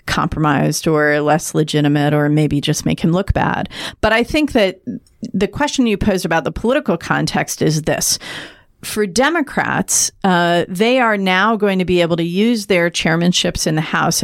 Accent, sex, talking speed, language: American, female, 175 wpm, English